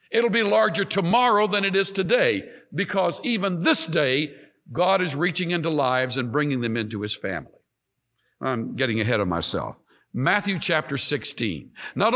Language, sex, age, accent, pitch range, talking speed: English, male, 60-79, American, 135-205 Hz, 160 wpm